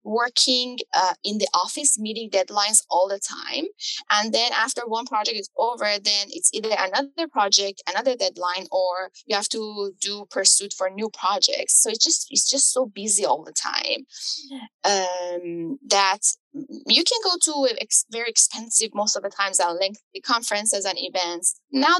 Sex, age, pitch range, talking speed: female, 10-29, 195-270 Hz, 170 wpm